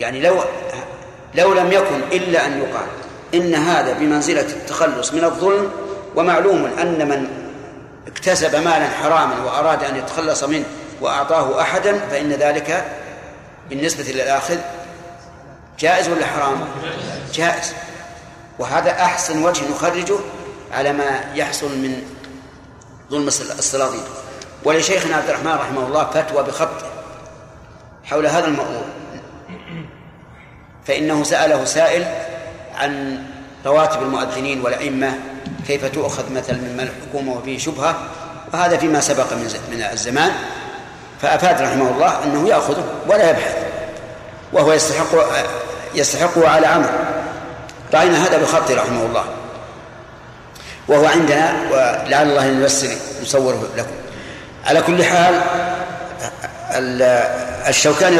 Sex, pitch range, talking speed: male, 135-170 Hz, 105 wpm